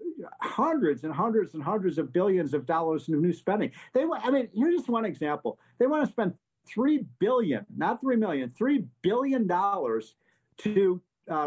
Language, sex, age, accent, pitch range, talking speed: English, male, 50-69, American, 175-240 Hz, 175 wpm